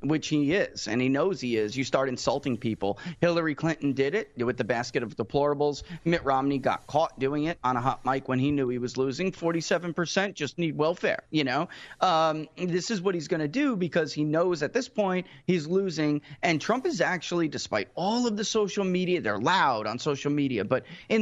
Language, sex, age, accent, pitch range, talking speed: English, male, 30-49, American, 125-170 Hz, 215 wpm